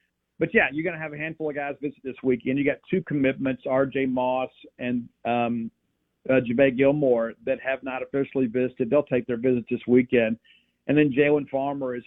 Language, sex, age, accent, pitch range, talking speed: English, male, 50-69, American, 125-140 Hz, 200 wpm